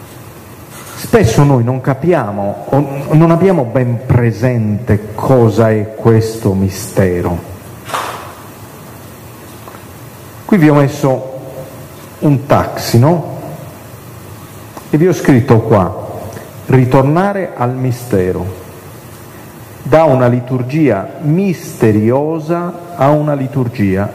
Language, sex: Italian, male